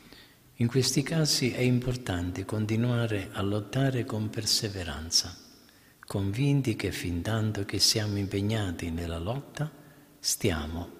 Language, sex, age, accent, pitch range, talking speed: Italian, male, 50-69, native, 90-120 Hz, 110 wpm